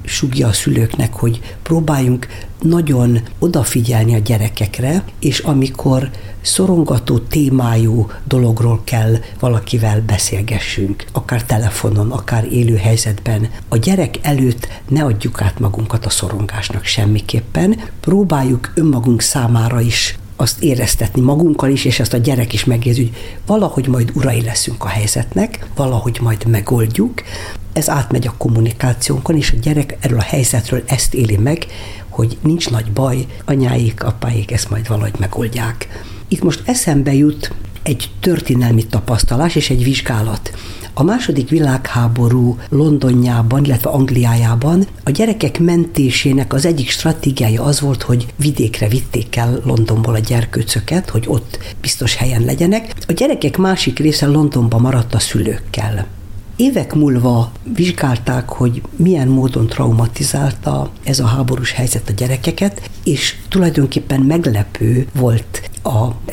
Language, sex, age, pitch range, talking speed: Hungarian, female, 60-79, 110-140 Hz, 130 wpm